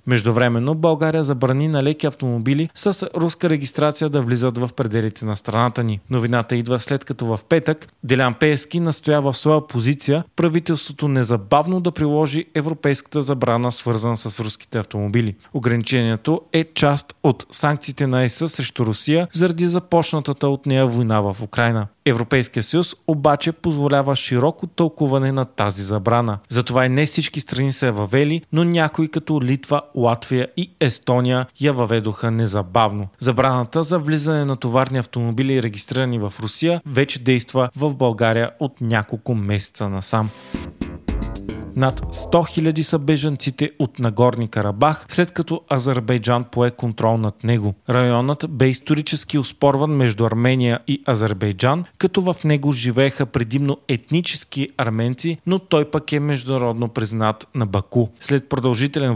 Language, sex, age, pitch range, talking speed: Bulgarian, male, 30-49, 120-155 Hz, 140 wpm